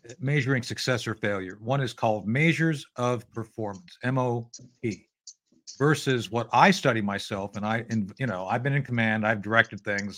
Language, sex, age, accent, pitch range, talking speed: English, male, 50-69, American, 110-145 Hz, 165 wpm